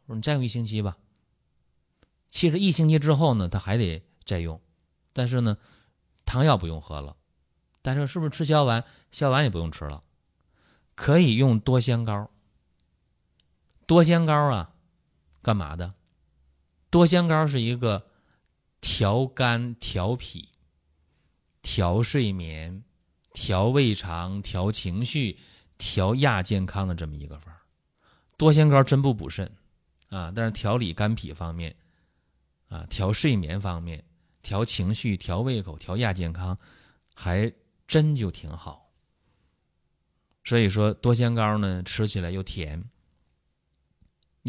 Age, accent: 30-49, native